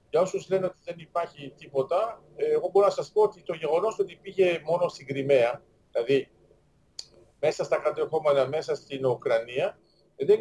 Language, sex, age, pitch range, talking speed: Greek, male, 50-69, 145-205 Hz, 160 wpm